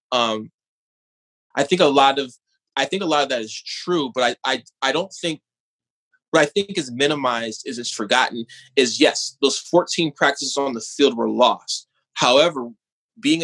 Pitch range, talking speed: 120-155 Hz, 180 wpm